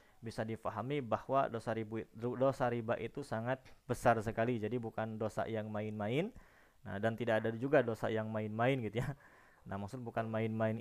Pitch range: 110-130 Hz